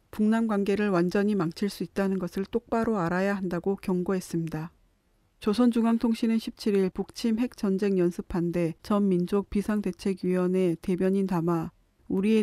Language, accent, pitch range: Korean, native, 180-215 Hz